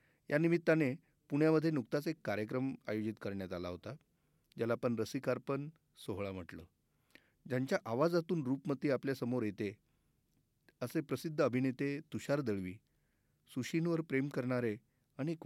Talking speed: 110 wpm